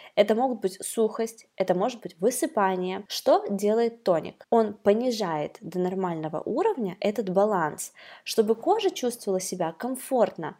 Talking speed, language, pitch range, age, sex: 130 wpm, Russian, 190-235 Hz, 20-39, female